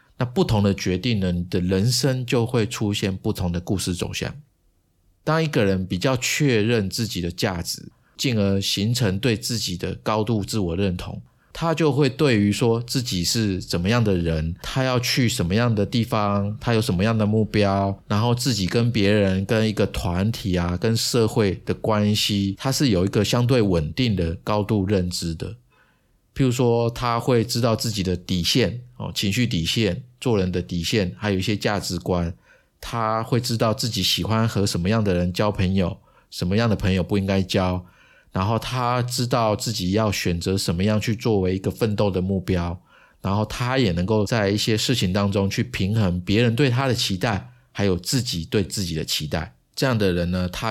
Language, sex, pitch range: Chinese, male, 95-115 Hz